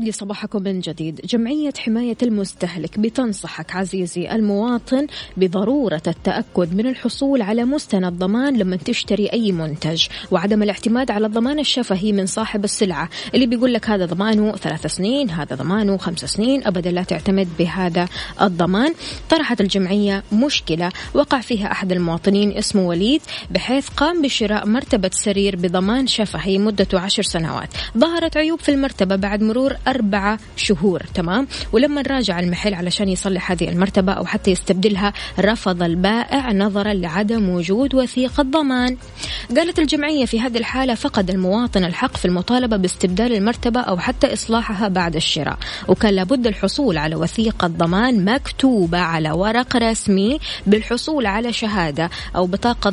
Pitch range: 185-240 Hz